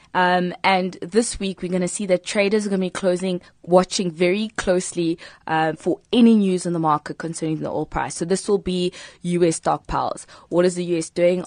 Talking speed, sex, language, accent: 210 wpm, female, English, South African